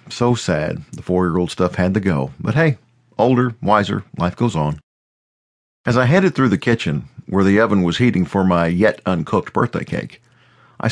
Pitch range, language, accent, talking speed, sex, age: 90-120 Hz, English, American, 175 wpm, male, 50-69